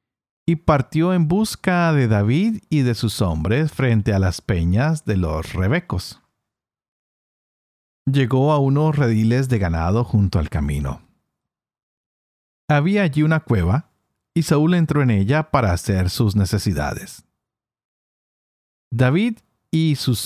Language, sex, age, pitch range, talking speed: Spanish, male, 50-69, 95-150 Hz, 125 wpm